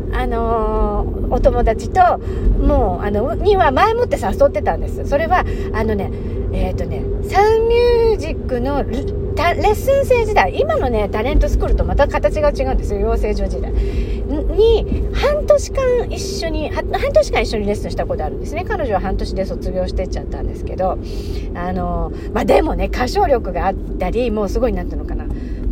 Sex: female